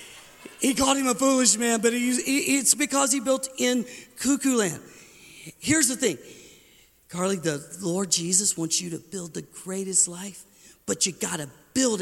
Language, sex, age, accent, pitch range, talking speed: English, male, 50-69, American, 175-250 Hz, 165 wpm